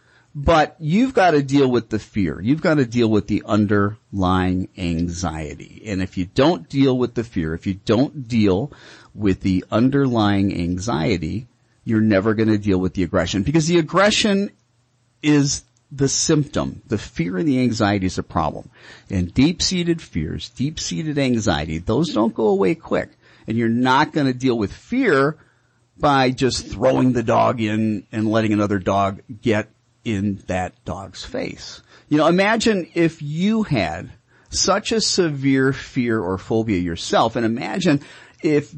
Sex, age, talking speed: male, 40-59, 160 wpm